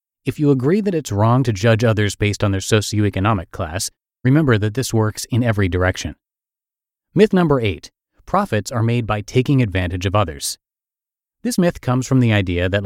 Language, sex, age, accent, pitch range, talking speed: English, male, 30-49, American, 100-135 Hz, 180 wpm